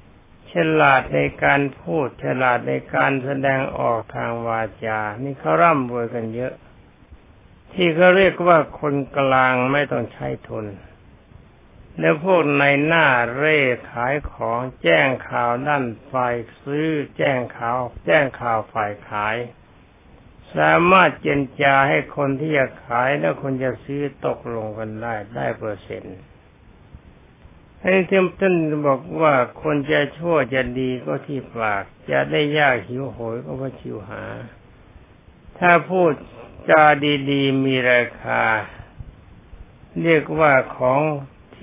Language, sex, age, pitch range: Thai, male, 60-79, 110-145 Hz